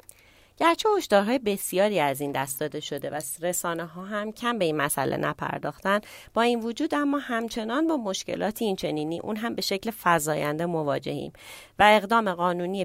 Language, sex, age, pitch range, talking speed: Persian, female, 30-49, 155-205 Hz, 160 wpm